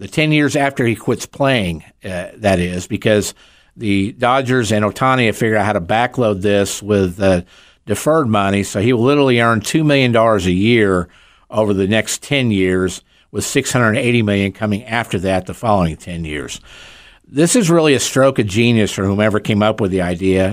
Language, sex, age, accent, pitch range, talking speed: English, male, 50-69, American, 100-125 Hz, 185 wpm